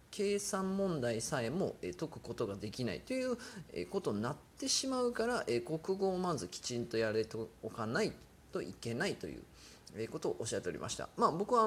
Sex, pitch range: male, 115-180 Hz